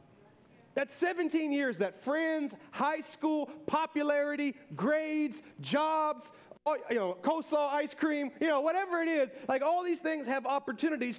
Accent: American